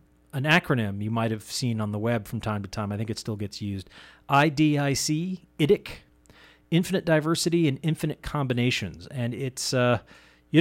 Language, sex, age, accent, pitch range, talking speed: English, male, 40-59, American, 100-140 Hz, 170 wpm